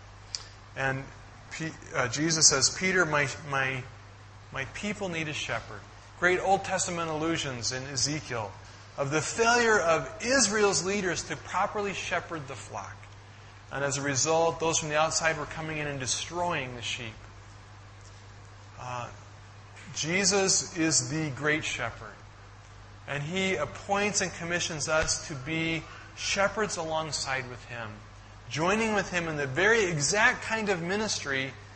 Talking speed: 135 wpm